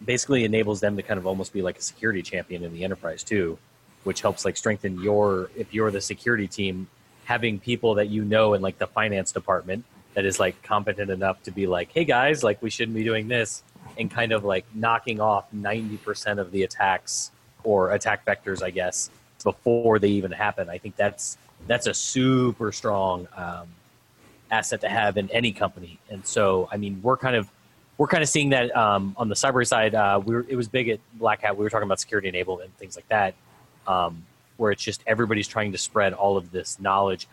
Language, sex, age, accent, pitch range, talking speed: English, male, 30-49, American, 95-115 Hz, 215 wpm